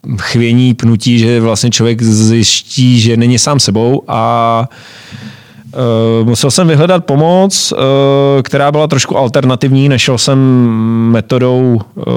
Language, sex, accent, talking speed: Czech, male, native, 120 wpm